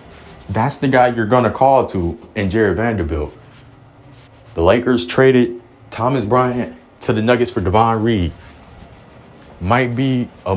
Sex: male